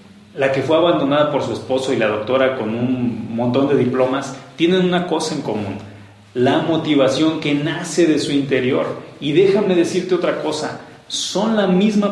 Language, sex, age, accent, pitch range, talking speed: Spanish, male, 40-59, Mexican, 125-160 Hz, 175 wpm